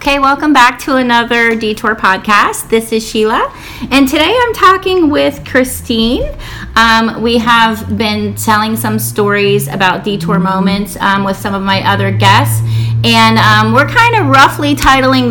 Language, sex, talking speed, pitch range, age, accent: English, female, 155 wpm, 190-235 Hz, 30-49, American